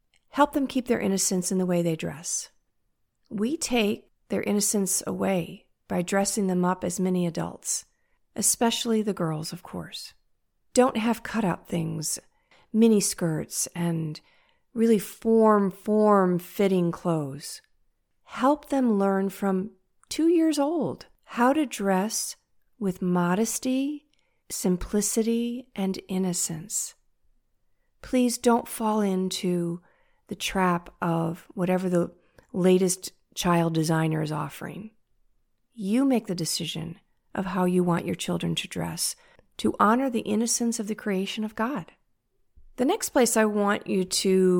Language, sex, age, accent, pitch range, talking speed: English, female, 50-69, American, 180-230 Hz, 125 wpm